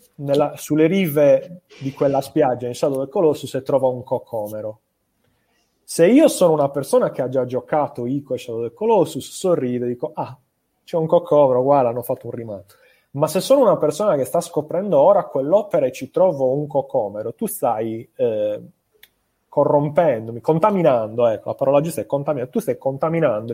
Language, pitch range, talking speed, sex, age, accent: Italian, 125-165 Hz, 175 wpm, male, 30-49, native